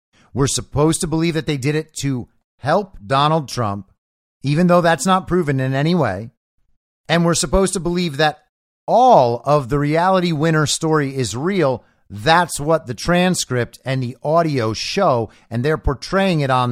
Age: 50-69